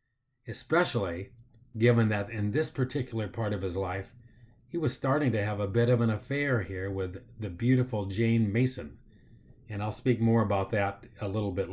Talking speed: 180 wpm